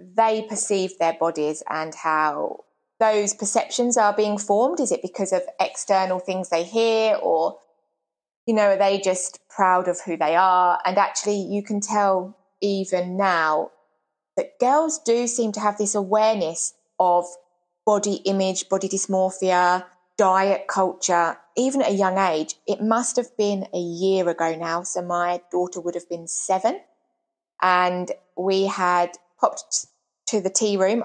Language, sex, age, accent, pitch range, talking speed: English, female, 20-39, British, 175-210 Hz, 155 wpm